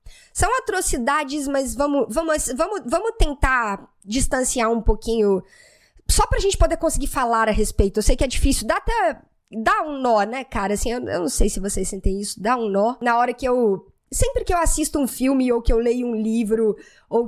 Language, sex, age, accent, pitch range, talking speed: Portuguese, female, 10-29, Brazilian, 215-280 Hz, 210 wpm